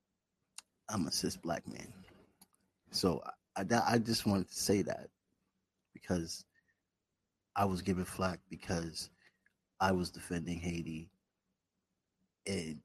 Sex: male